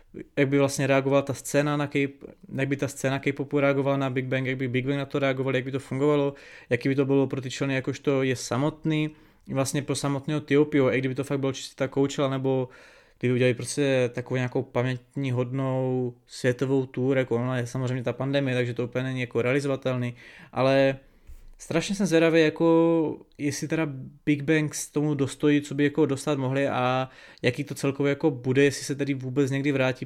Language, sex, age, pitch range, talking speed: Czech, male, 20-39, 130-140 Hz, 195 wpm